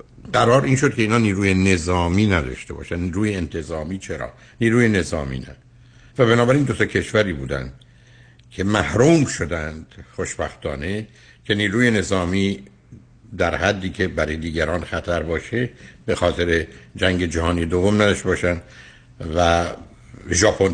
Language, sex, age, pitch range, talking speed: Persian, male, 60-79, 70-110 Hz, 125 wpm